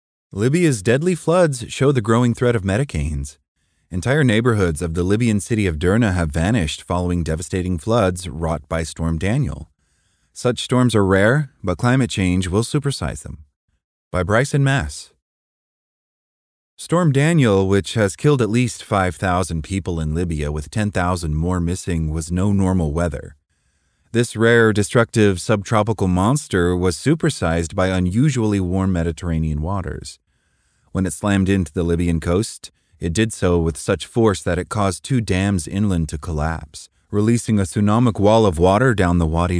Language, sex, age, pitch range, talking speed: English, male, 30-49, 80-110 Hz, 150 wpm